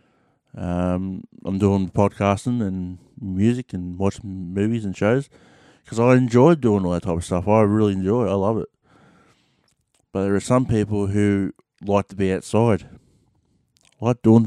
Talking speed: 160 wpm